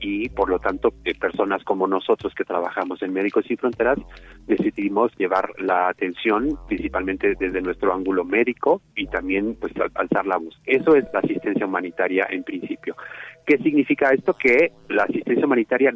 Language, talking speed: Spanish, 165 wpm